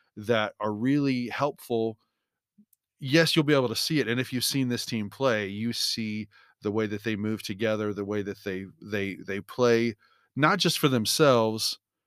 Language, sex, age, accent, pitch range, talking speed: English, male, 40-59, American, 105-135 Hz, 185 wpm